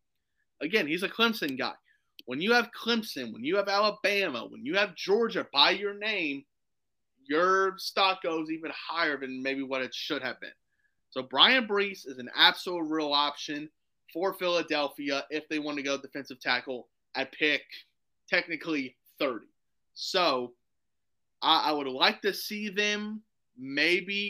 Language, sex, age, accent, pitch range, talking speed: English, male, 30-49, American, 140-190 Hz, 155 wpm